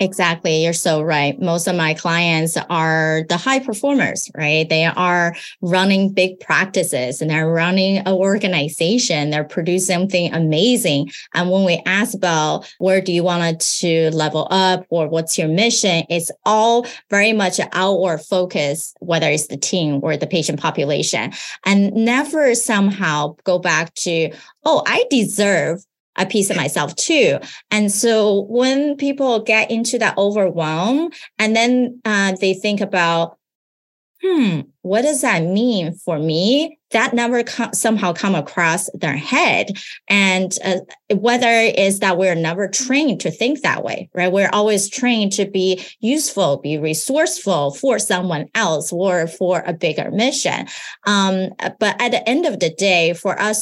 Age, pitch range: 20-39, 170-225 Hz